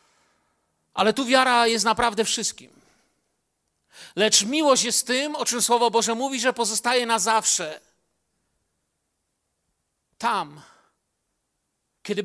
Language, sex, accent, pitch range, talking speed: Polish, male, native, 160-240 Hz, 105 wpm